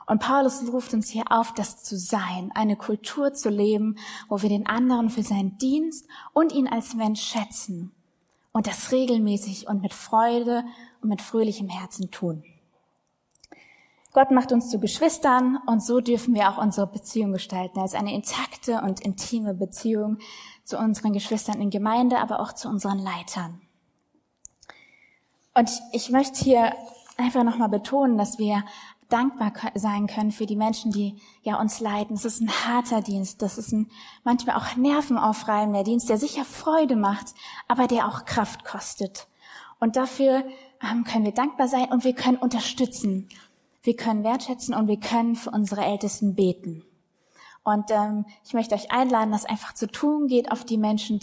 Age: 20-39